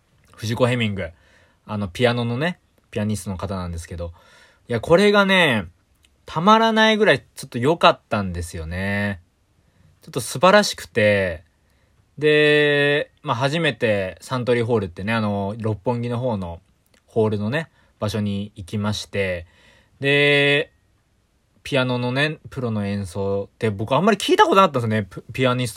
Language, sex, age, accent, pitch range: Japanese, male, 20-39, native, 95-135 Hz